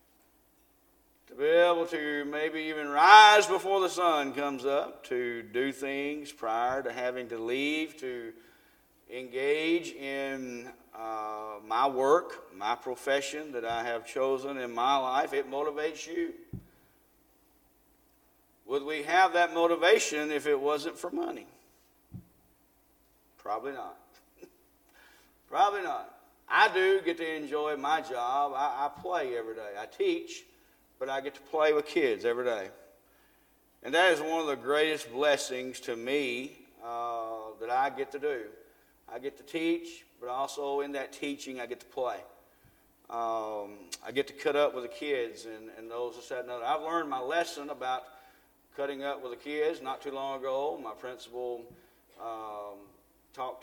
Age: 50-69